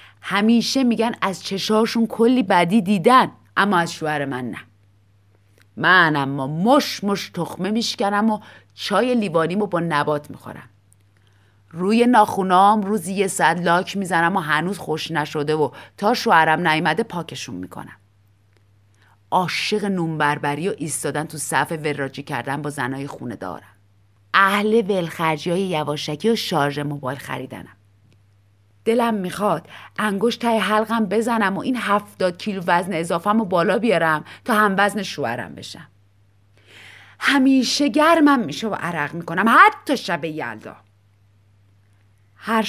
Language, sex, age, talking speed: Persian, female, 30-49, 130 wpm